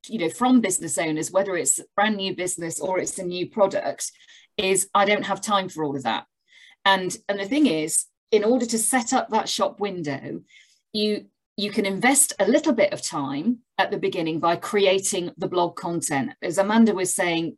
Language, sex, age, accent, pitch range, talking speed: English, female, 40-59, British, 175-225 Hz, 200 wpm